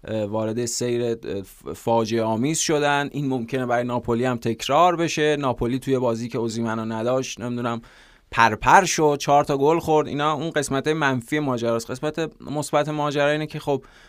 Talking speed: 160 wpm